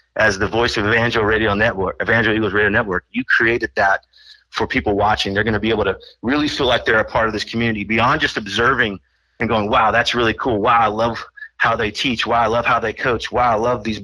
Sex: male